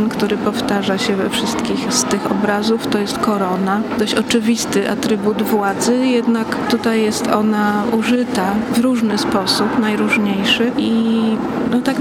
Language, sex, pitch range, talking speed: Polish, female, 220-245 Hz, 130 wpm